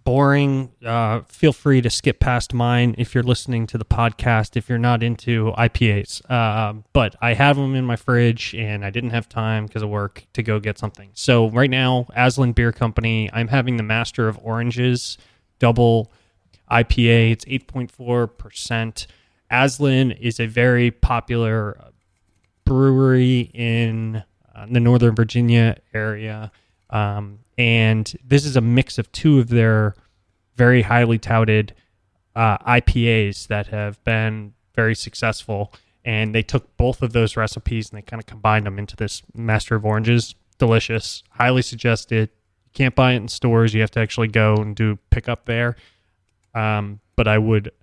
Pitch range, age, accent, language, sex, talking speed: 105-120 Hz, 20-39, American, English, male, 160 wpm